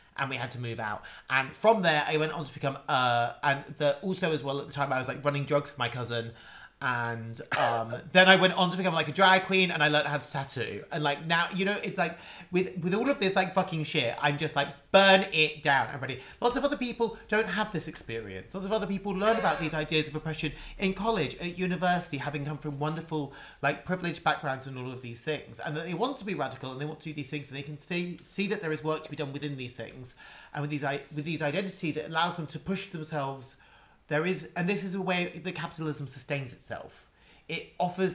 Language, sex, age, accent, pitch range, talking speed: English, male, 30-49, British, 140-185 Hz, 250 wpm